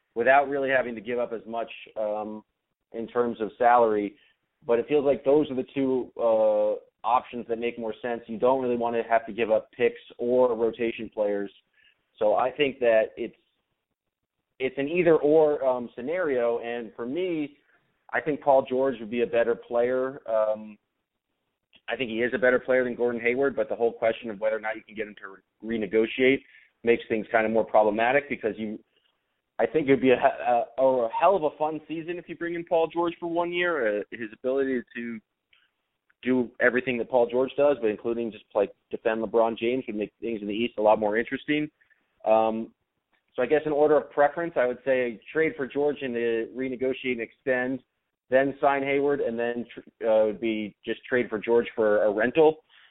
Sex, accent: male, American